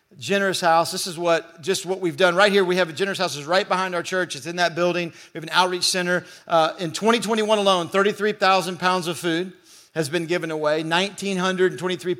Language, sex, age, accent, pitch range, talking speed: English, male, 50-69, American, 165-195 Hz, 210 wpm